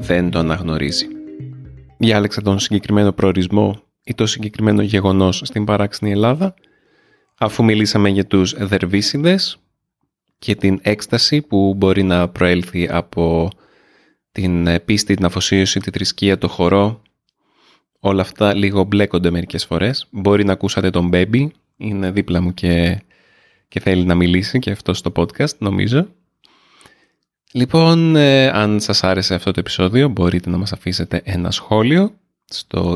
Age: 20-39